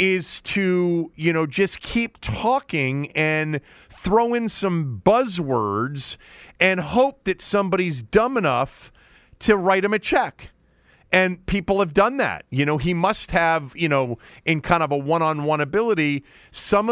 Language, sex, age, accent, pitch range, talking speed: English, male, 40-59, American, 135-195 Hz, 150 wpm